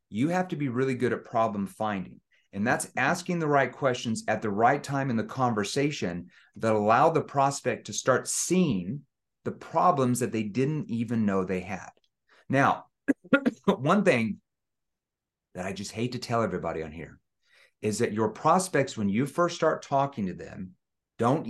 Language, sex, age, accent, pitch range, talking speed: English, male, 30-49, American, 110-145 Hz, 175 wpm